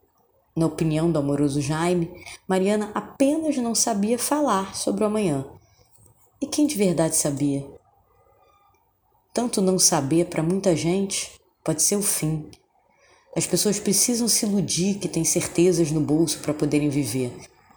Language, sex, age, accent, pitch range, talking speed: Portuguese, female, 20-39, Brazilian, 150-200 Hz, 140 wpm